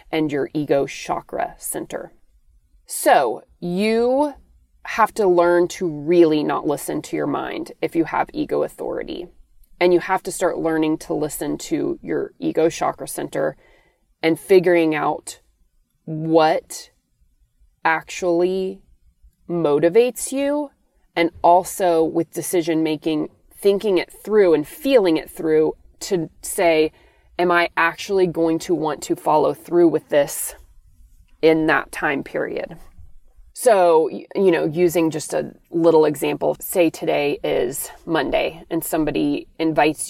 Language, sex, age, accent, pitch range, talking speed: English, female, 30-49, American, 155-195 Hz, 125 wpm